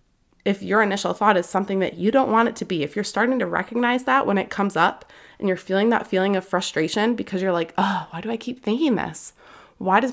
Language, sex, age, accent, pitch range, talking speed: English, female, 20-39, American, 185-245 Hz, 250 wpm